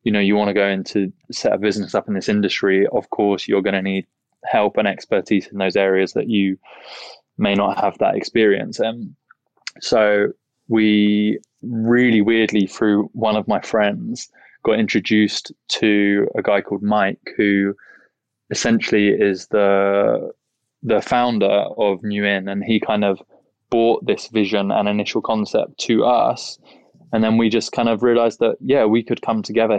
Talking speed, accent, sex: 165 wpm, British, male